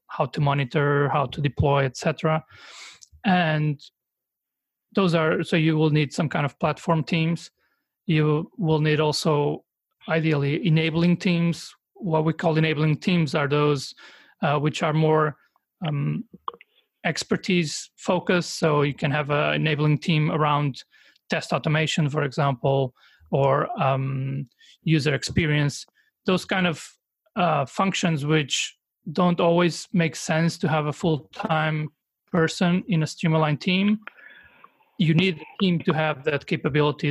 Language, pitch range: English, 145-170 Hz